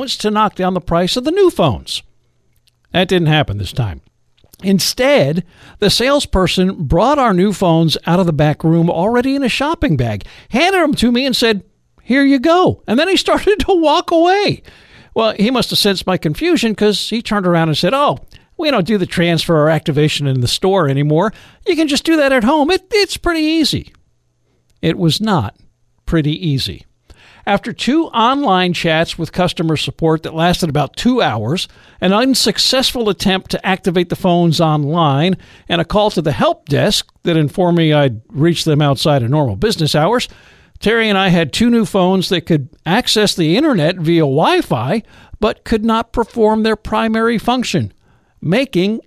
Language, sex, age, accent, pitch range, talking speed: English, male, 50-69, American, 165-240 Hz, 180 wpm